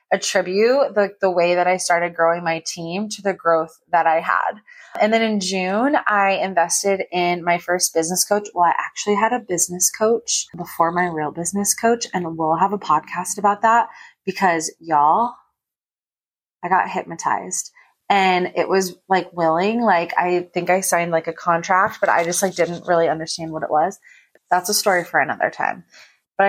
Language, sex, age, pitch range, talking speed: English, female, 20-39, 175-205 Hz, 185 wpm